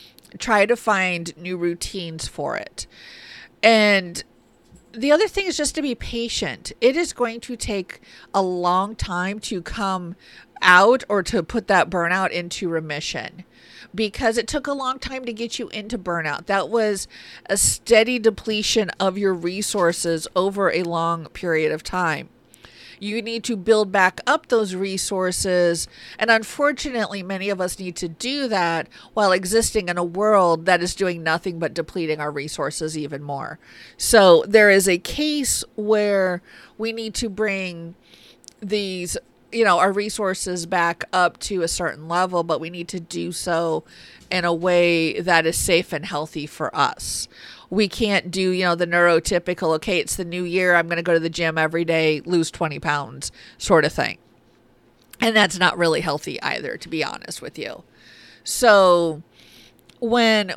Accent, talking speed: American, 165 wpm